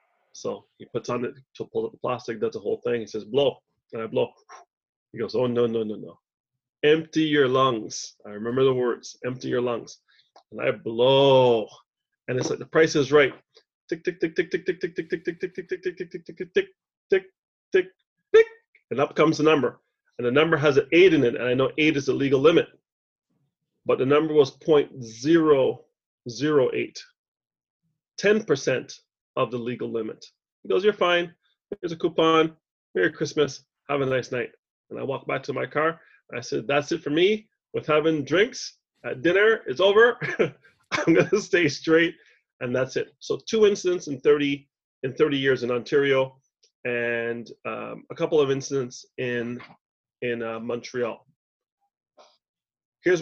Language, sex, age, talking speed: English, male, 30-49, 185 wpm